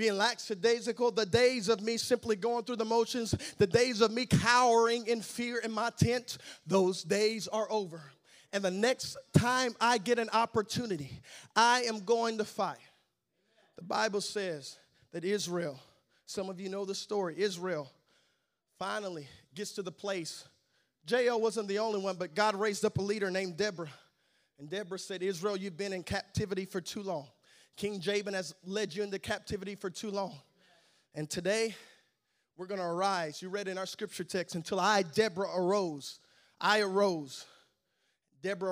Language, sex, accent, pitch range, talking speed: English, male, American, 185-220 Hz, 165 wpm